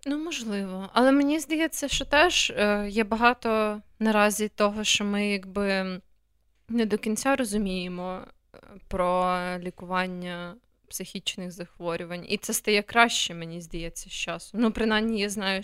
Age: 20-39